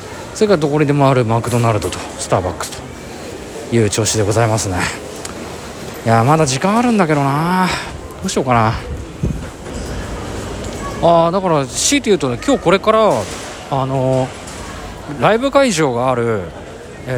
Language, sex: Japanese, male